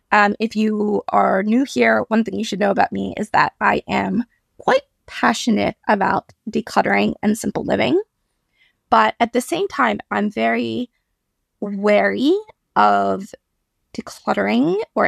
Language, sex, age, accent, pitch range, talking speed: English, female, 20-39, American, 200-245 Hz, 140 wpm